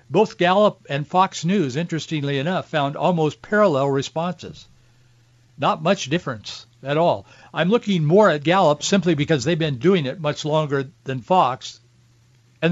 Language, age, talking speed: English, 60-79, 150 wpm